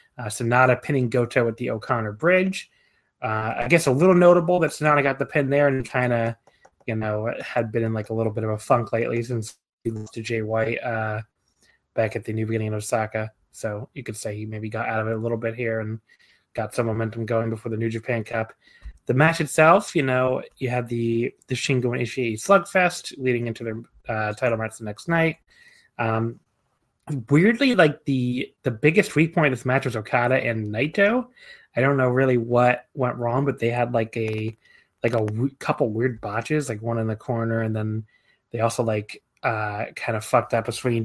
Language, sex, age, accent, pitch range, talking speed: English, male, 20-39, American, 115-135 Hz, 210 wpm